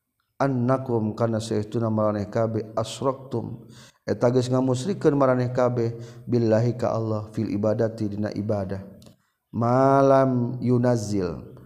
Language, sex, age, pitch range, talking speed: Indonesian, male, 40-59, 110-135 Hz, 105 wpm